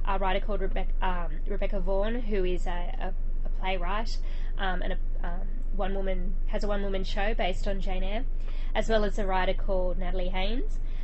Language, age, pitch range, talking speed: English, 20-39, 185-215 Hz, 195 wpm